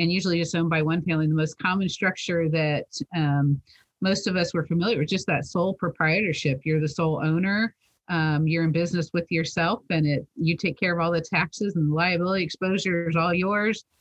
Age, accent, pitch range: 40-59, American, 155-185 Hz